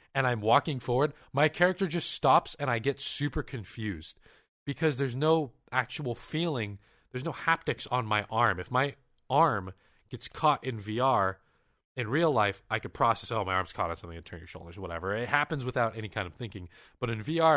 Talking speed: 200 wpm